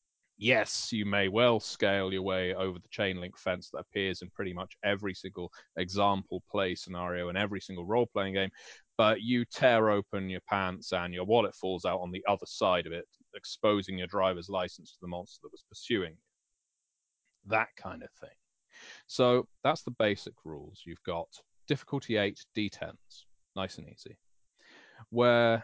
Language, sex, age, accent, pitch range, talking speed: English, male, 30-49, British, 90-115 Hz, 175 wpm